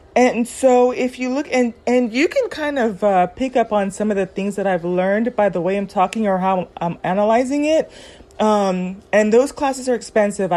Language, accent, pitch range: English, American, 190-235 Hz